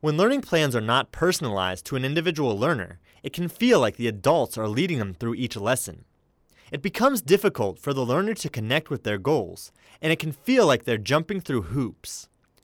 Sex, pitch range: male, 115-185 Hz